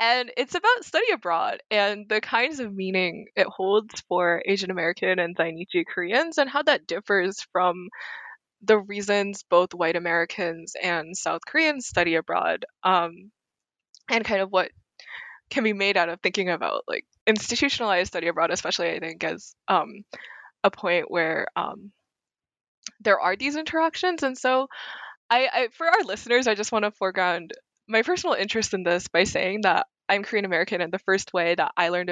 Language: English